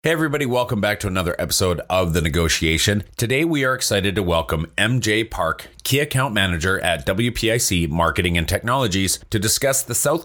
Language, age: English, 30-49